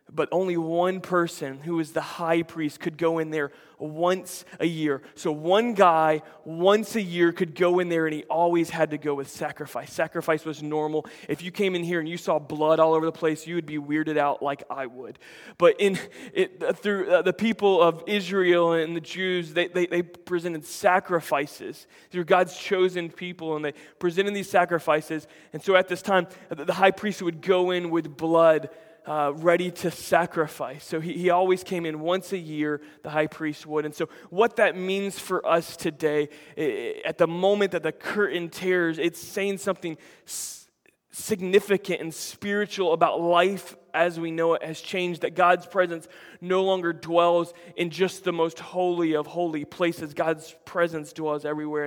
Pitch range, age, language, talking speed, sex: 155-180 Hz, 20-39, English, 185 wpm, male